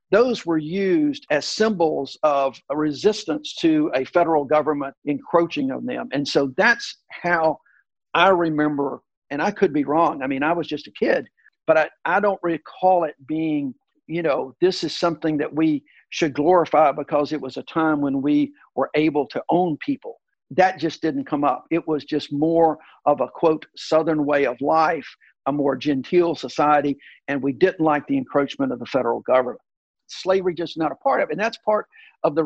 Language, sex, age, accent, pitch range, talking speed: English, male, 50-69, American, 150-210 Hz, 190 wpm